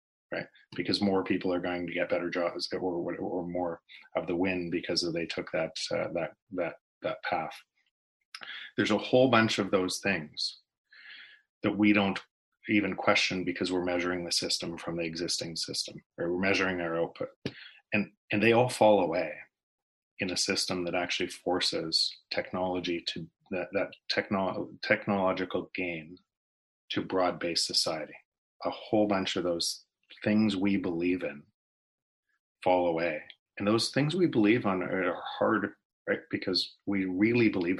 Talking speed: 155 wpm